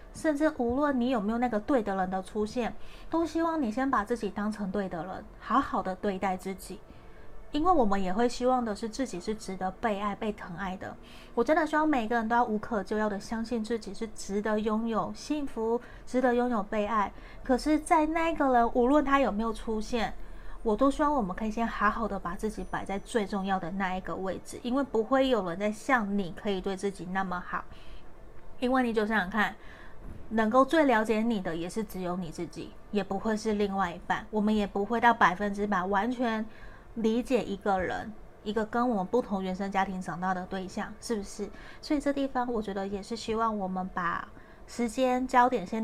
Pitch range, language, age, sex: 195-245 Hz, Chinese, 30-49, female